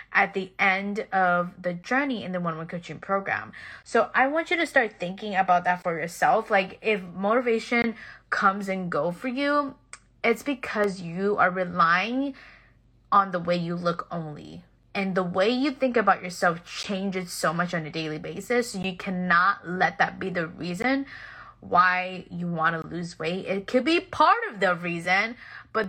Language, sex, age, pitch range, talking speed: English, female, 20-39, 175-210 Hz, 180 wpm